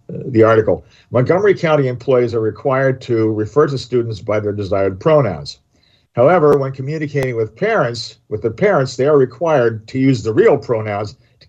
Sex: male